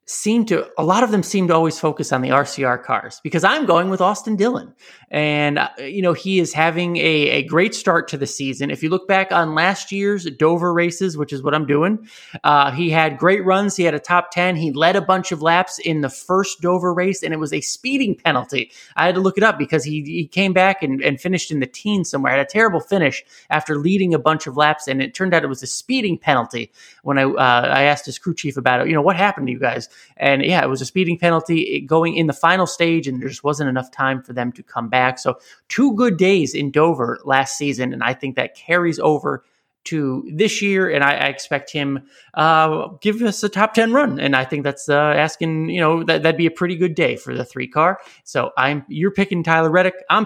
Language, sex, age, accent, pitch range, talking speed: English, male, 30-49, American, 140-185 Hz, 245 wpm